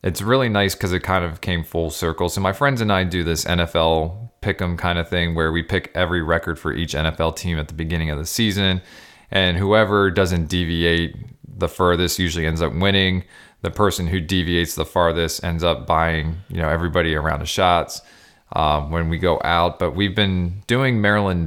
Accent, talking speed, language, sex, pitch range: American, 205 wpm, English, male, 80-95 Hz